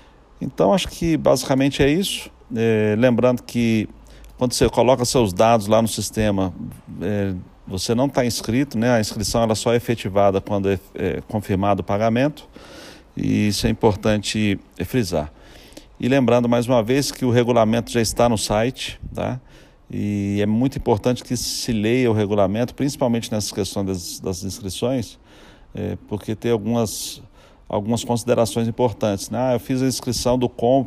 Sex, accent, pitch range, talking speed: male, Brazilian, 100-120 Hz, 150 wpm